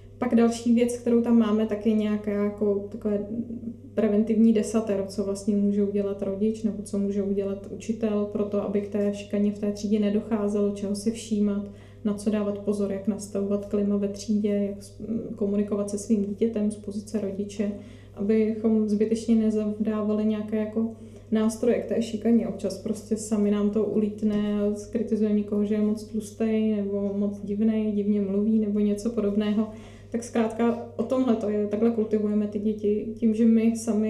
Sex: female